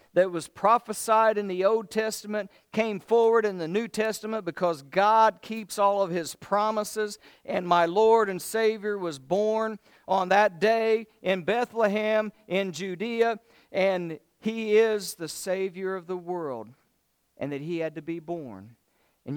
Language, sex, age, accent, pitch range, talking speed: English, male, 50-69, American, 130-185 Hz, 155 wpm